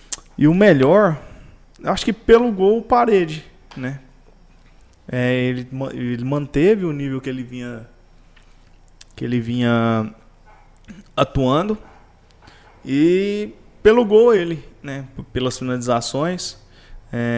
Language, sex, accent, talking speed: Portuguese, male, Brazilian, 90 wpm